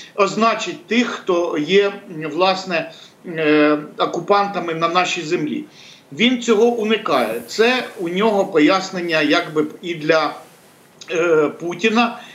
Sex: male